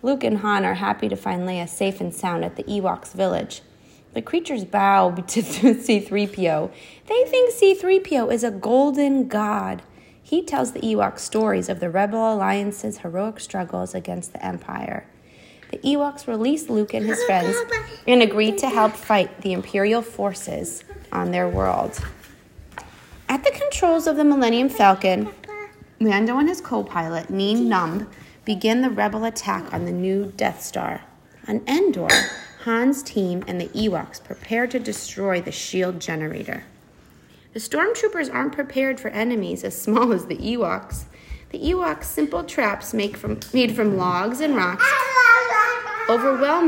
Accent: American